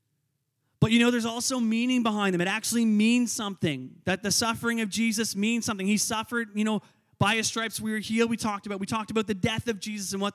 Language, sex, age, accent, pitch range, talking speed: English, male, 30-49, American, 170-245 Hz, 240 wpm